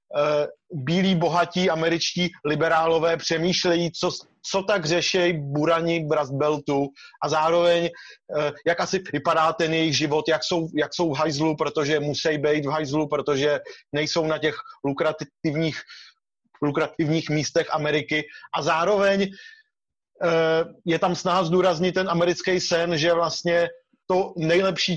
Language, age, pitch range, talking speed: Czech, 30-49, 155-175 Hz, 125 wpm